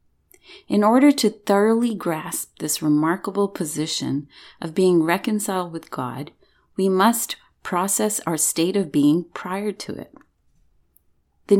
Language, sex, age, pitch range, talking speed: English, female, 30-49, 150-190 Hz, 125 wpm